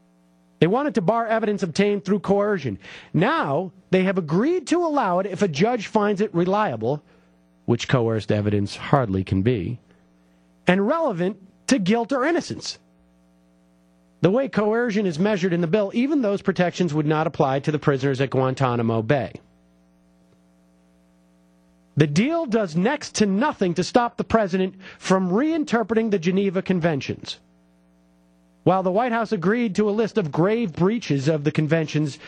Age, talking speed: 40-59, 150 wpm